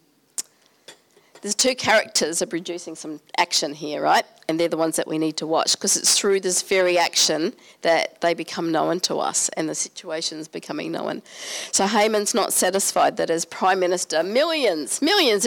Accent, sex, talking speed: Australian, female, 180 wpm